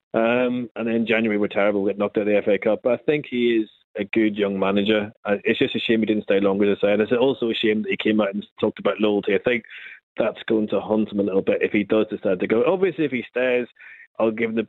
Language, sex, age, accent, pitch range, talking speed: English, male, 30-49, British, 110-130 Hz, 300 wpm